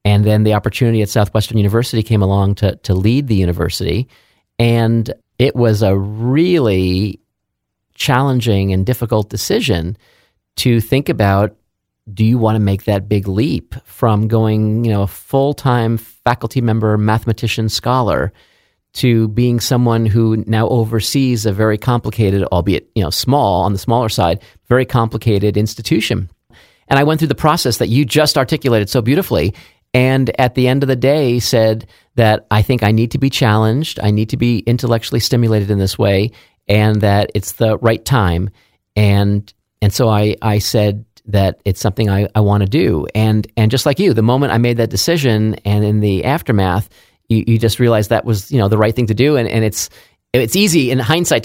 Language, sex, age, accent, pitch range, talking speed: English, male, 40-59, American, 105-125 Hz, 180 wpm